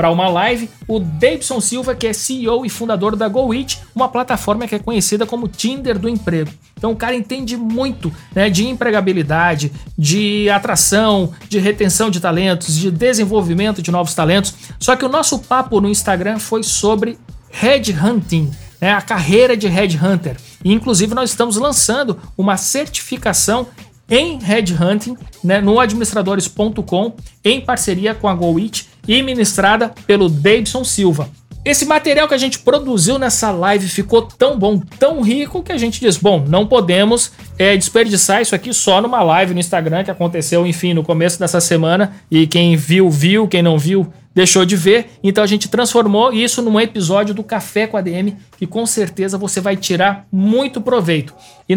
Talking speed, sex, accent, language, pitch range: 165 wpm, male, Brazilian, Portuguese, 185-230 Hz